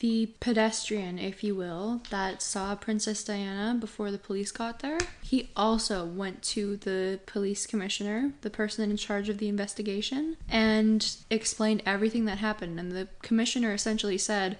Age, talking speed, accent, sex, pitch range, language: 10-29, 155 wpm, American, female, 205-230 Hz, English